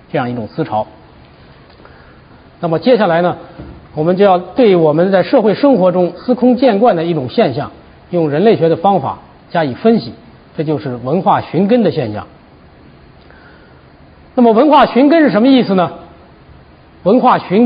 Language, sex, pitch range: Chinese, male, 175-255 Hz